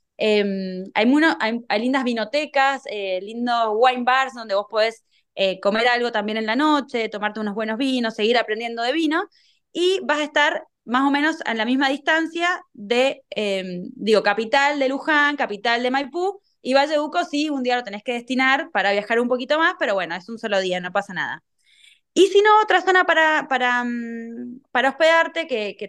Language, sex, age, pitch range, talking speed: Spanish, female, 20-39, 215-305 Hz, 195 wpm